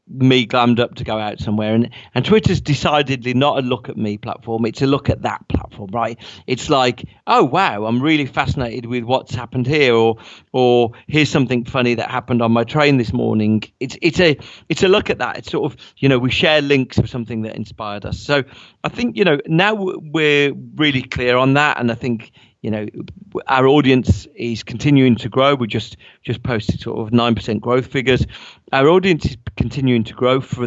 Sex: male